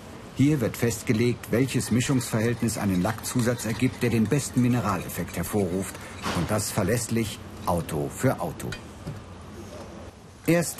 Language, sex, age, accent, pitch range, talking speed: German, male, 50-69, German, 100-125 Hz, 110 wpm